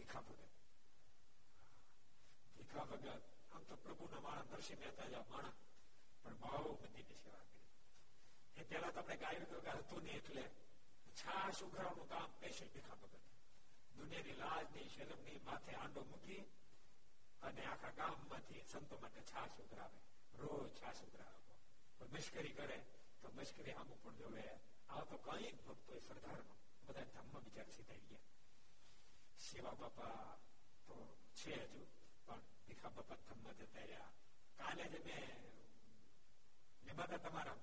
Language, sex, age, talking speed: Gujarati, male, 60-79, 55 wpm